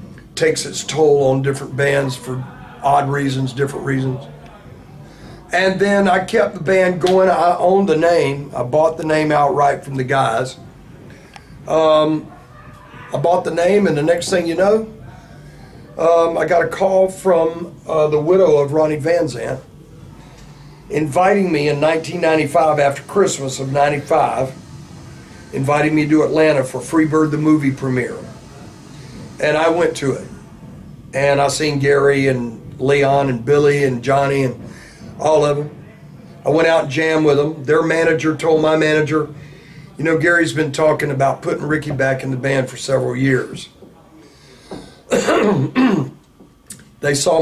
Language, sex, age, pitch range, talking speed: English, male, 40-59, 140-165 Hz, 150 wpm